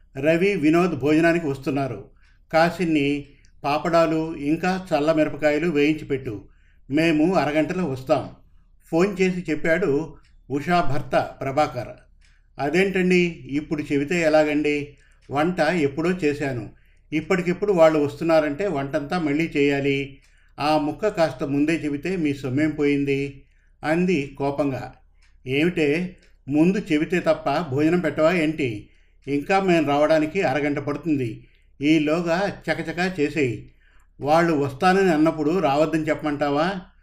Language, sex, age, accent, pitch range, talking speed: Telugu, male, 50-69, native, 140-165 Hz, 100 wpm